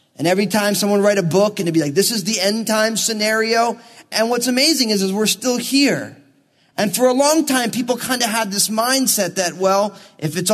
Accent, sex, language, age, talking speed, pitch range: American, male, English, 20-39, 230 wpm, 190-250 Hz